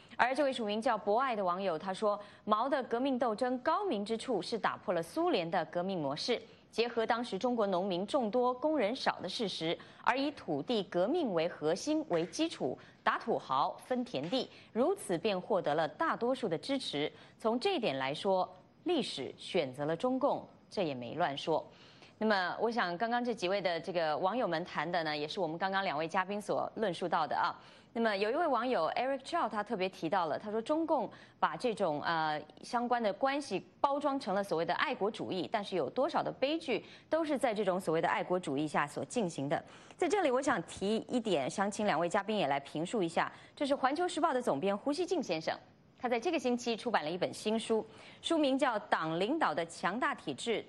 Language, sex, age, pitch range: English, female, 20-39, 180-265 Hz